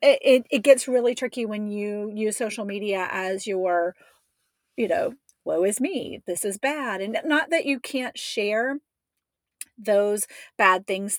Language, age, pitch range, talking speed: English, 40-59, 190-235 Hz, 155 wpm